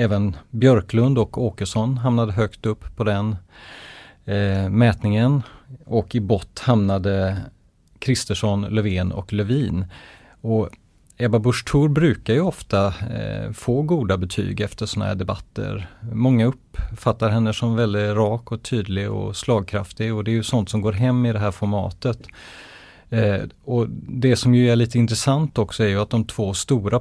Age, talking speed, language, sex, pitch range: 30-49, 155 wpm, English, male, 100-120 Hz